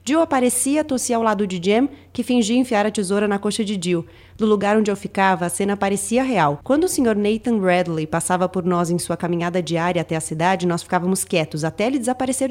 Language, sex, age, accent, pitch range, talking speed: Portuguese, female, 30-49, Brazilian, 185-225 Hz, 220 wpm